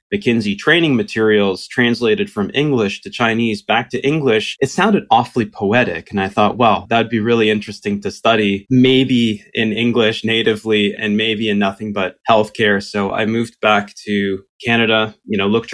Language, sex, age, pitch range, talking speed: English, male, 20-39, 95-110 Hz, 170 wpm